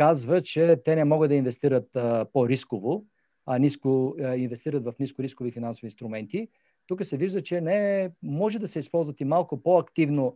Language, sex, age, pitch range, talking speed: Bulgarian, male, 50-69, 130-165 Hz, 160 wpm